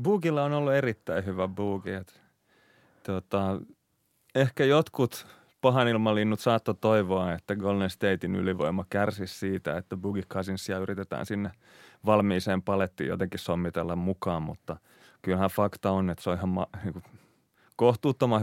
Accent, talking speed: native, 125 wpm